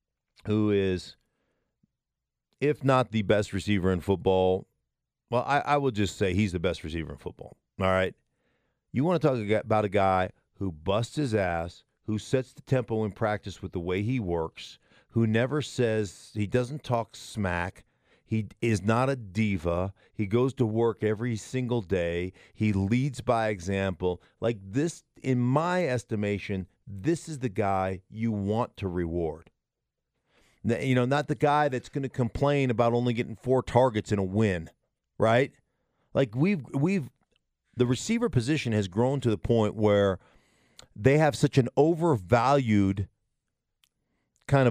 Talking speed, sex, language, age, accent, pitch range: 155 wpm, male, English, 50-69, American, 100-135 Hz